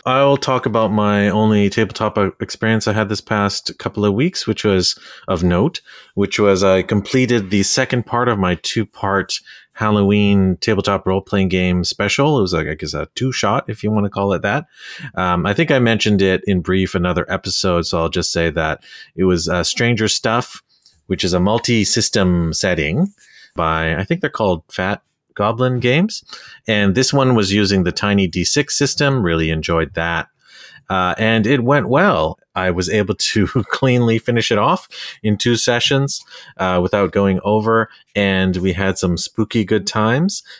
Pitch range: 95-120 Hz